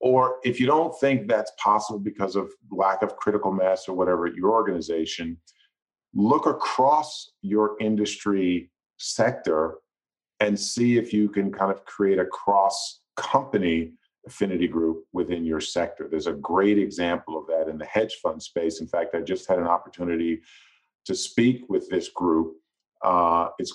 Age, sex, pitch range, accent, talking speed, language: 40-59, male, 85-110 Hz, American, 160 wpm, English